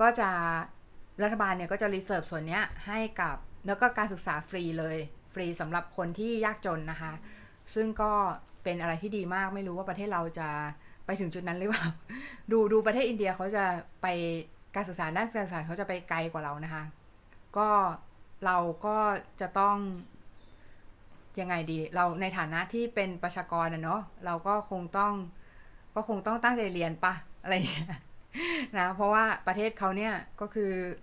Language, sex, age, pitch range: Thai, female, 20-39, 165-210 Hz